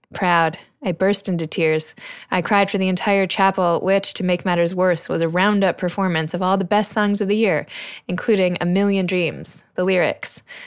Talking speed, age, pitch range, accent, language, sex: 190 wpm, 20-39, 170-195 Hz, American, English, female